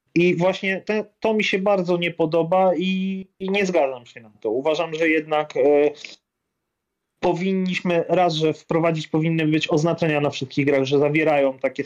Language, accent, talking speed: Polish, native, 155 wpm